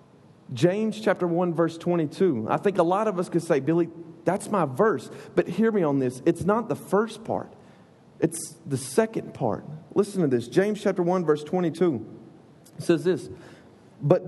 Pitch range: 165-205 Hz